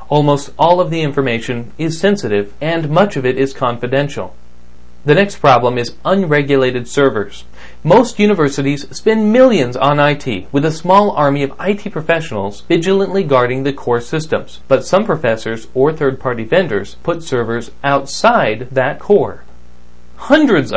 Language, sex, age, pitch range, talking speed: English, male, 40-59, 120-165 Hz, 140 wpm